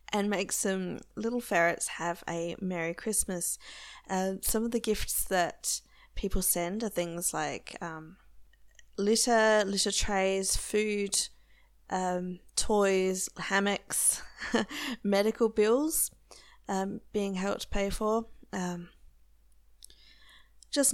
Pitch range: 190-235 Hz